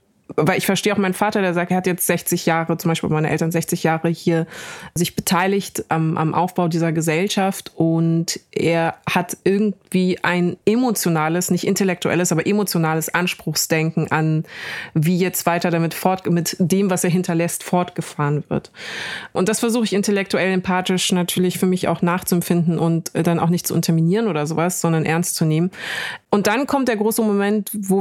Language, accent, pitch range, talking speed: German, German, 165-195 Hz, 170 wpm